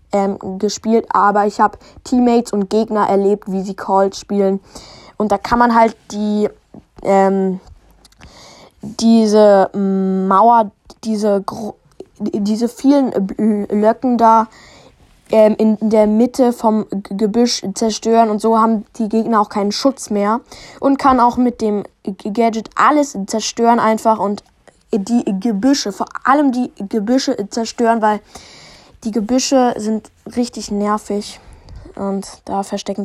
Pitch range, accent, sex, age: 200-235 Hz, German, female, 10-29